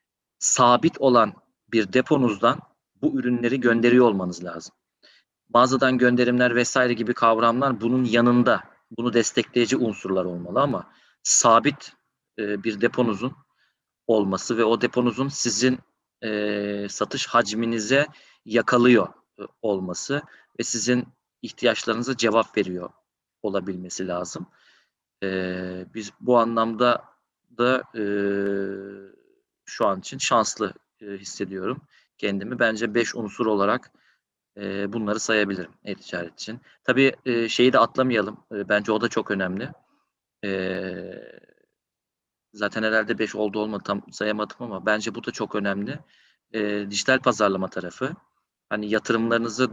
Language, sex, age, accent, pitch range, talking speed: Turkish, male, 40-59, native, 100-120 Hz, 115 wpm